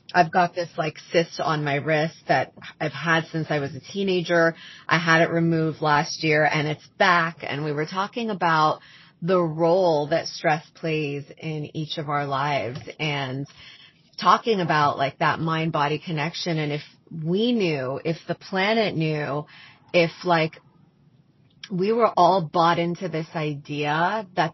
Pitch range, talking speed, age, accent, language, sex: 155-180 Hz, 160 wpm, 30-49, American, English, female